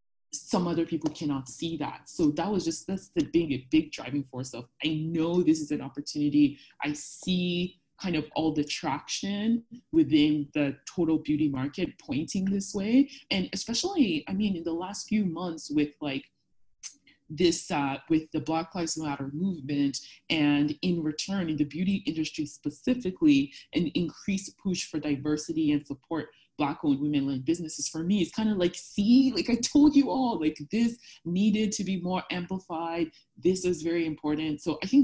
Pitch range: 145-185 Hz